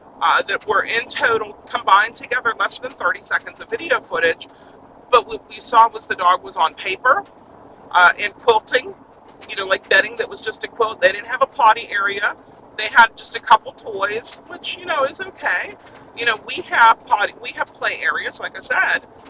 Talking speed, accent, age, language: 200 wpm, American, 40-59, English